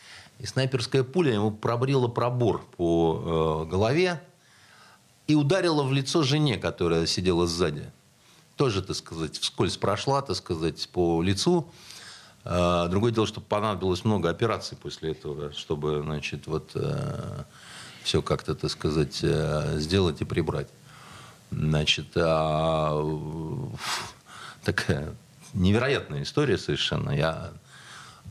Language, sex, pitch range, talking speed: Russian, male, 80-120 Hz, 115 wpm